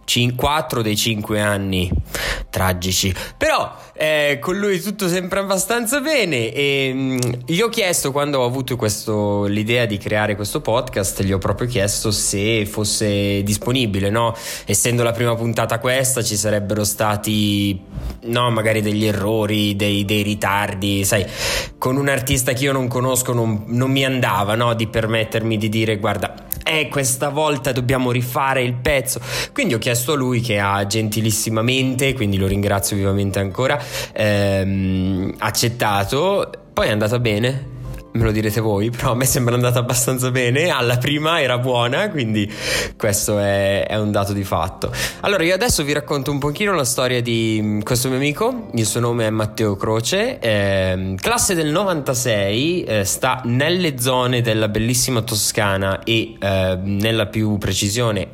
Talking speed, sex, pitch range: 160 wpm, male, 105-130 Hz